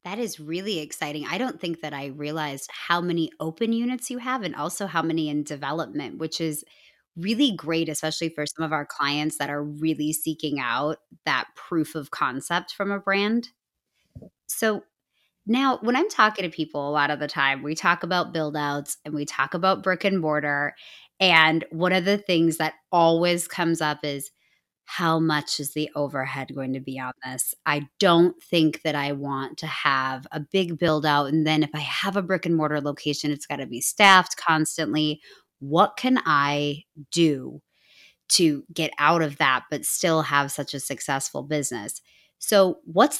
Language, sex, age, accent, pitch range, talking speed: English, female, 20-39, American, 145-180 Hz, 185 wpm